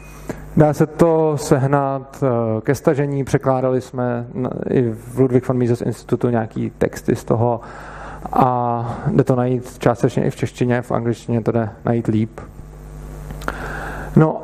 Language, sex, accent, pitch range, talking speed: Czech, male, native, 125-165 Hz, 135 wpm